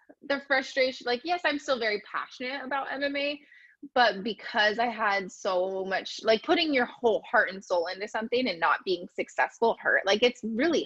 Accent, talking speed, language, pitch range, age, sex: American, 180 wpm, English, 195-245 Hz, 20-39, female